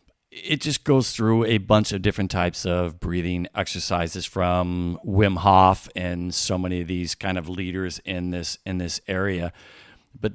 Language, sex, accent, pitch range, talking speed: English, male, American, 95-110 Hz, 170 wpm